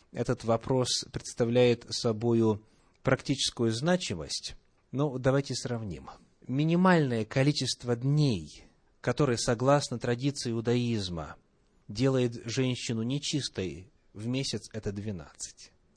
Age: 30-49